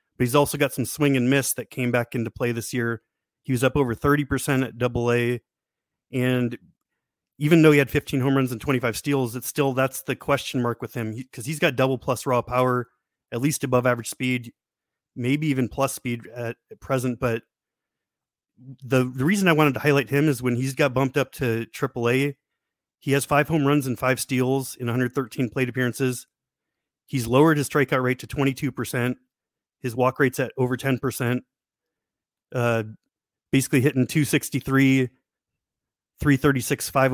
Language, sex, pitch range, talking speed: English, male, 125-140 Hz, 185 wpm